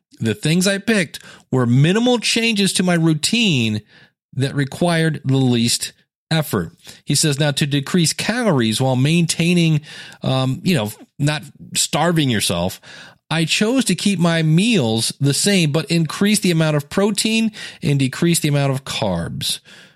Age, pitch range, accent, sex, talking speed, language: 40-59, 120-170 Hz, American, male, 145 wpm, English